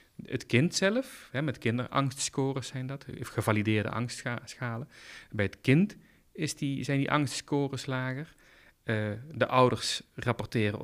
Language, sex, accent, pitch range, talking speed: Dutch, male, Dutch, 110-140 Hz, 125 wpm